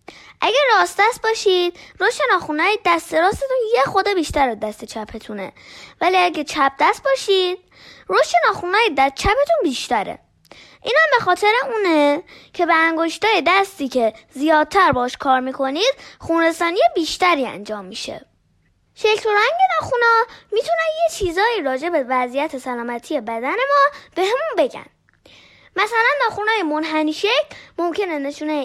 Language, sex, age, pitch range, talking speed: Persian, female, 10-29, 265-390 Hz, 125 wpm